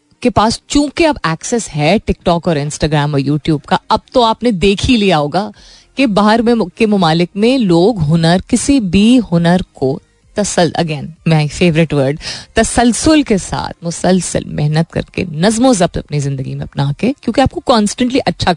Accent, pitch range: native, 170-245 Hz